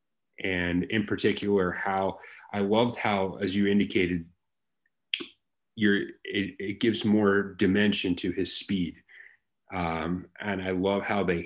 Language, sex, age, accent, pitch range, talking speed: English, male, 30-49, American, 90-100 Hz, 125 wpm